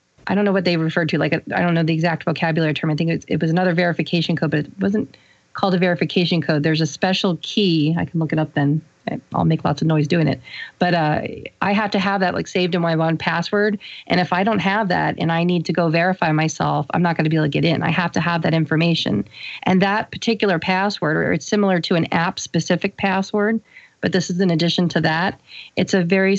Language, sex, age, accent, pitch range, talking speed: English, female, 40-59, American, 165-195 Hz, 245 wpm